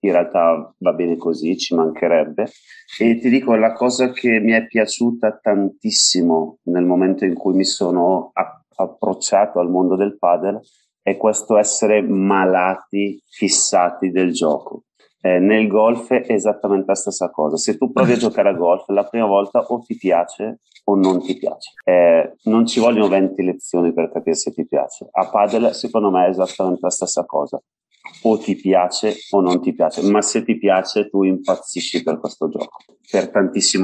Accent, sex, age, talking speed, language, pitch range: native, male, 30-49, 175 wpm, Italian, 95-105 Hz